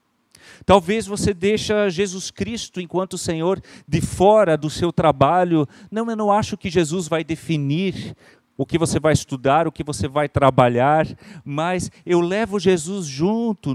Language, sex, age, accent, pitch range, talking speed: Portuguese, male, 40-59, Brazilian, 135-185 Hz, 155 wpm